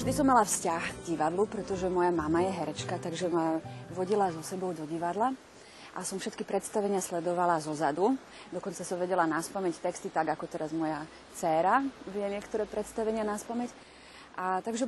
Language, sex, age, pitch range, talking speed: Slovak, female, 30-49, 170-210 Hz, 160 wpm